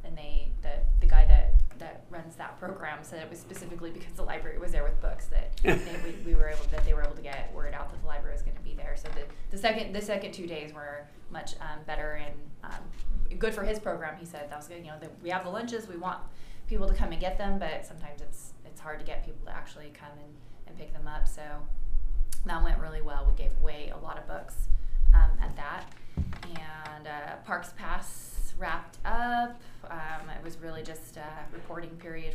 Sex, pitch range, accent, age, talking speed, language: female, 145-170 Hz, American, 20-39, 235 wpm, English